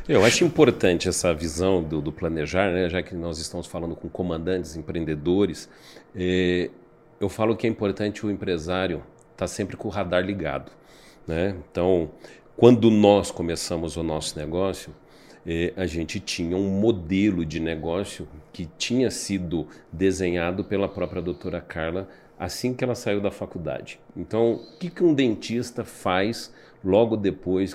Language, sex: Portuguese, male